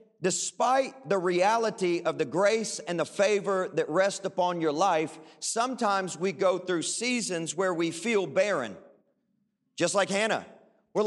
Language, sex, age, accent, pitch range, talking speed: English, male, 40-59, American, 195-245 Hz, 145 wpm